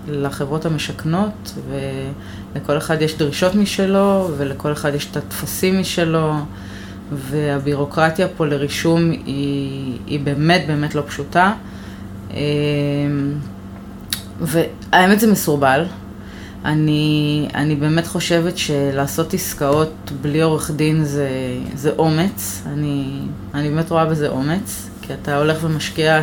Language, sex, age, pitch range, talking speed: Hebrew, female, 20-39, 140-165 Hz, 105 wpm